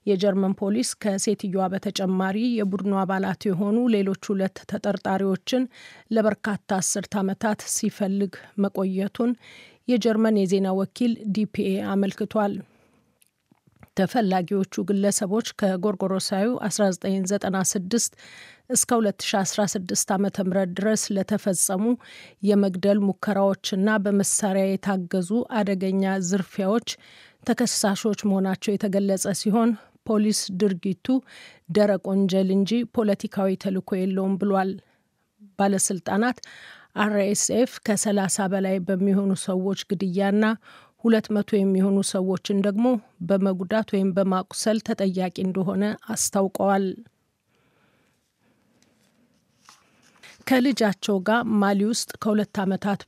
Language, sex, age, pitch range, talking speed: Amharic, female, 40-59, 195-215 Hz, 75 wpm